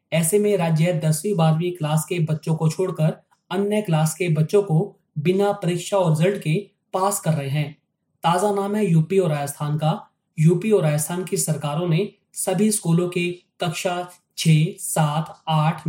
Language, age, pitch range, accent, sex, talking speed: Hindi, 20-39, 155-190 Hz, native, male, 155 wpm